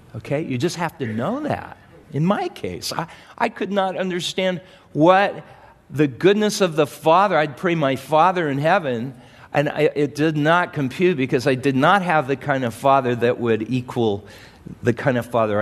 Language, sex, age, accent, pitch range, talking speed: English, male, 50-69, American, 135-195 Hz, 185 wpm